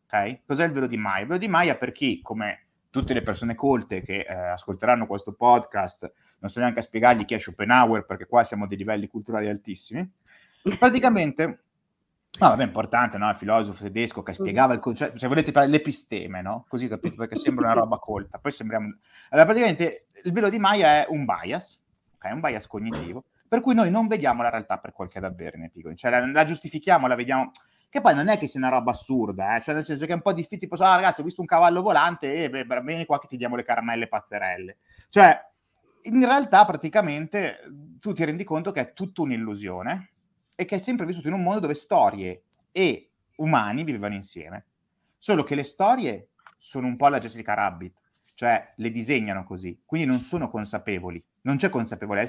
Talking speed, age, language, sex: 205 wpm, 30-49, Italian, male